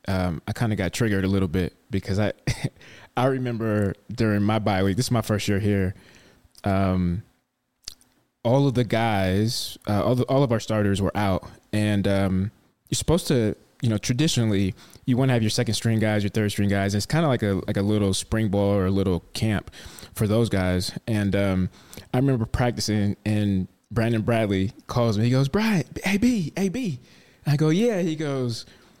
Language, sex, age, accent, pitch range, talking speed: English, male, 20-39, American, 105-165 Hz, 195 wpm